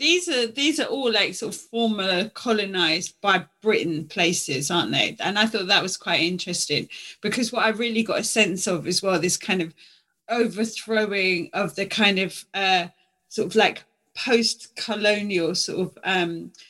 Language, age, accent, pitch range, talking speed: English, 30-49, British, 175-215 Hz, 175 wpm